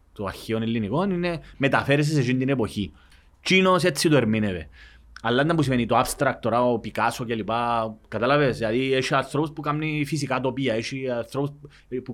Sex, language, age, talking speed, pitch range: male, Greek, 30-49, 165 wpm, 100-150 Hz